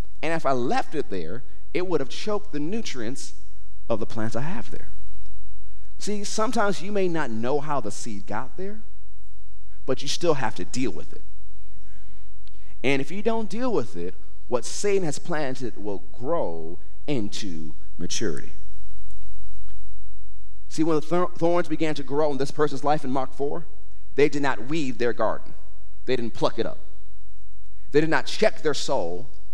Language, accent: English, American